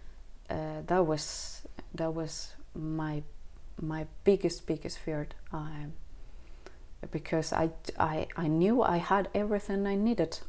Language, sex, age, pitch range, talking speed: Danish, female, 30-49, 160-185 Hz, 120 wpm